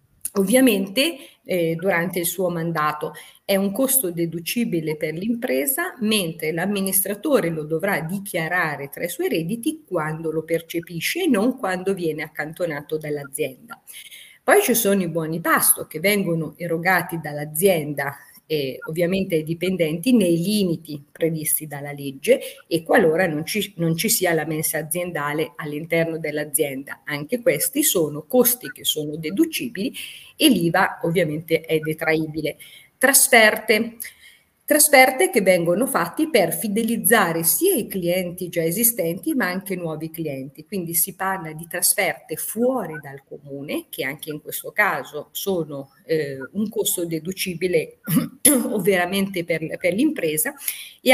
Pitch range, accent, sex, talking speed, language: 160-215 Hz, native, female, 130 wpm, Italian